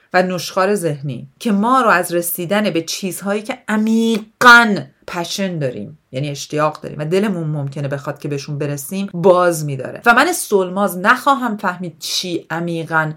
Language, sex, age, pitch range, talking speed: Persian, female, 40-59, 170-230 Hz, 150 wpm